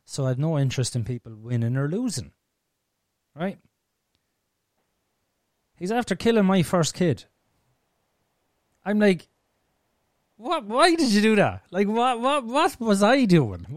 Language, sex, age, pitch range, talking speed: English, male, 30-49, 125-195 Hz, 140 wpm